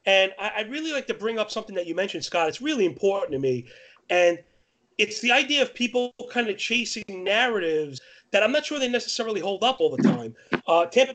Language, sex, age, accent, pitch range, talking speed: English, male, 30-49, American, 185-240 Hz, 215 wpm